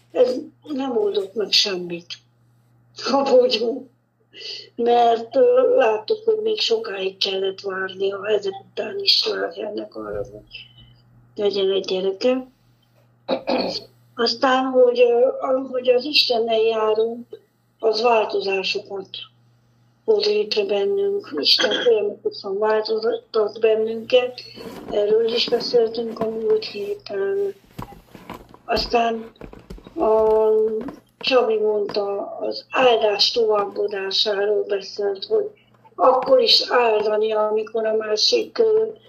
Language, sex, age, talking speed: Hungarian, female, 60-79, 95 wpm